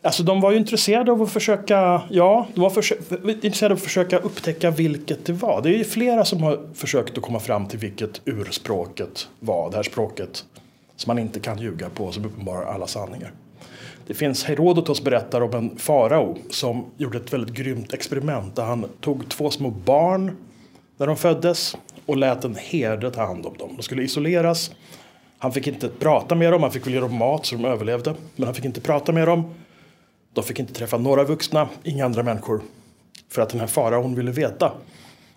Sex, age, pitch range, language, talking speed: male, 30-49, 120-170 Hz, Swedish, 200 wpm